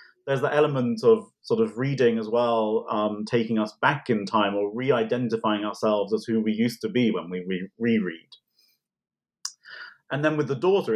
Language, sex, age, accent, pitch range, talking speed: English, male, 30-49, British, 110-165 Hz, 180 wpm